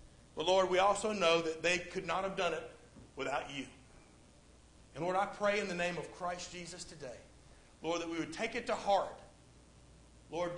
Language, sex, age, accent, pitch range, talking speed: English, male, 50-69, American, 140-195 Hz, 195 wpm